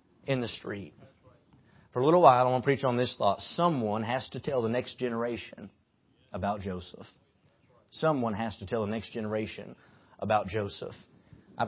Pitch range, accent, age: 105-125 Hz, American, 30-49